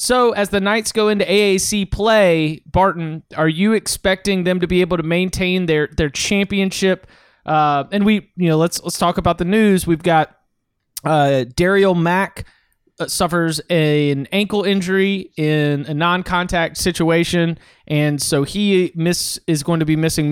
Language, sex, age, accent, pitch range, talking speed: English, male, 30-49, American, 155-190 Hz, 160 wpm